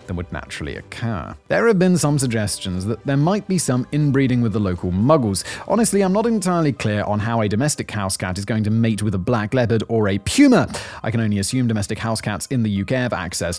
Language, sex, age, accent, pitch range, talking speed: English, male, 30-49, British, 100-140 Hz, 235 wpm